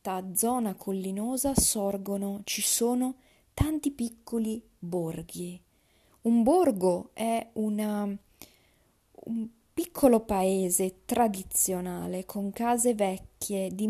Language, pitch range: Italian, 185-225 Hz